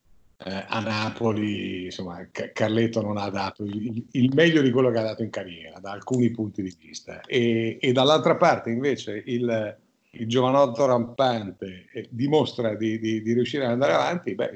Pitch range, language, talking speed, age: 110-140 Hz, Italian, 175 wpm, 50-69